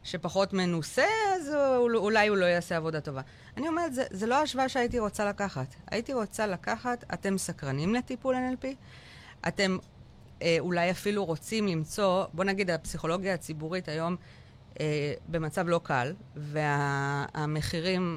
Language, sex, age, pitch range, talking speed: Hebrew, female, 30-49, 155-225 Hz, 135 wpm